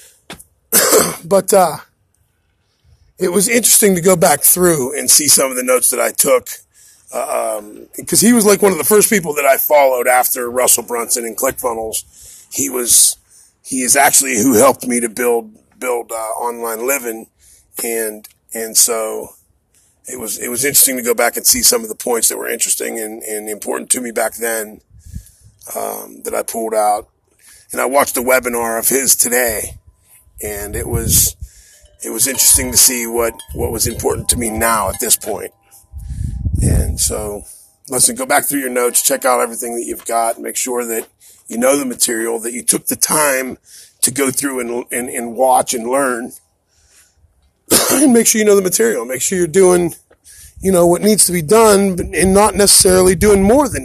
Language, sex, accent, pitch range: English, male, American, 105-175 Hz